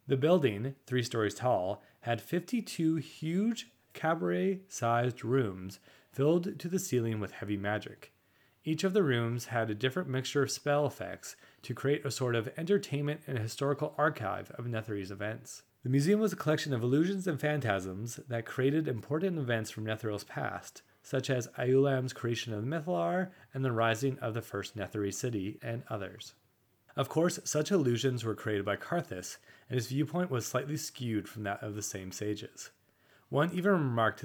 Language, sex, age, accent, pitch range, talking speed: English, male, 30-49, American, 105-145 Hz, 165 wpm